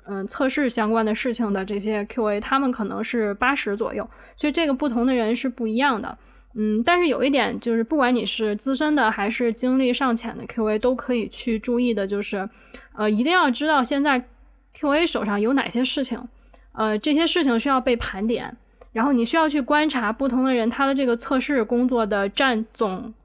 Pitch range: 220-265 Hz